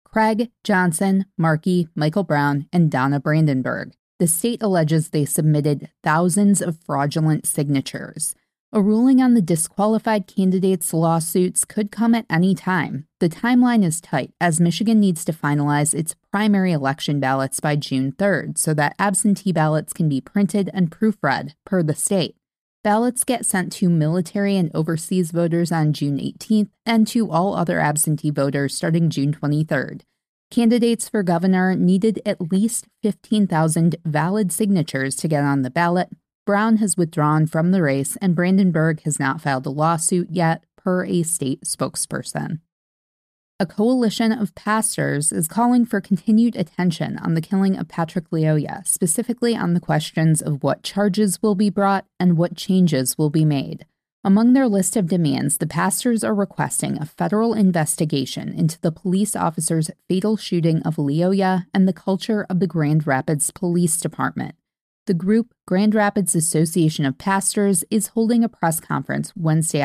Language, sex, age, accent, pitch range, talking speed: English, female, 20-39, American, 155-205 Hz, 155 wpm